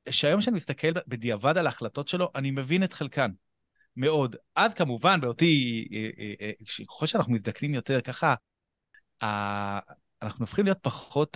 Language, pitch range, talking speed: Hebrew, 115-155 Hz, 125 wpm